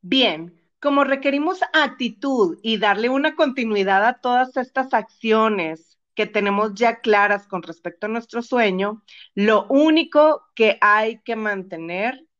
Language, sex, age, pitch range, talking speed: Spanish, female, 40-59, 190-240 Hz, 130 wpm